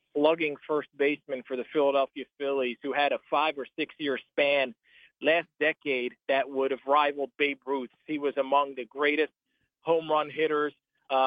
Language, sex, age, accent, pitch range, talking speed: English, male, 40-59, American, 140-165 Hz, 170 wpm